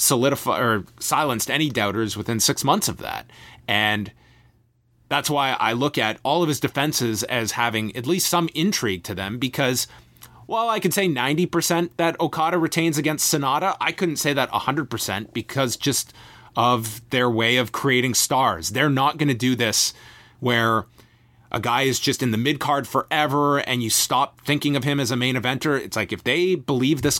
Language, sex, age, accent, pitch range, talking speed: English, male, 30-49, American, 115-145 Hz, 185 wpm